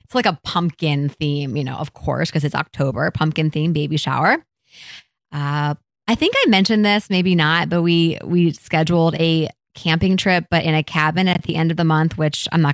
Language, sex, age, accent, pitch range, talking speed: English, female, 20-39, American, 155-185 Hz, 205 wpm